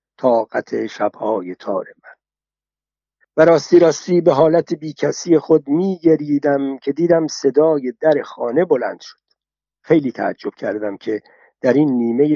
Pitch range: 140-165 Hz